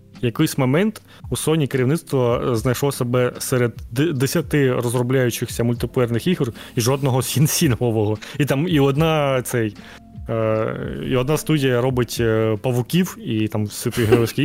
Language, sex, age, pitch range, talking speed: Ukrainian, male, 20-39, 115-150 Hz, 115 wpm